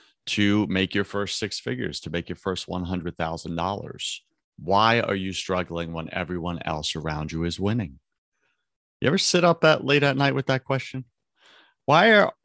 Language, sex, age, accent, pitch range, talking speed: English, male, 40-59, American, 95-135 Hz, 165 wpm